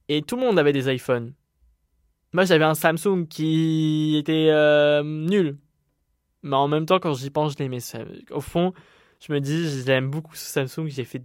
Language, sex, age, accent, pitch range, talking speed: French, male, 20-39, French, 135-170 Hz, 185 wpm